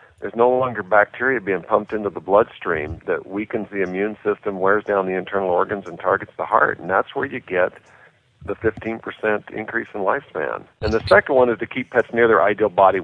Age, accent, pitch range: 50-69, American, 100-120 Hz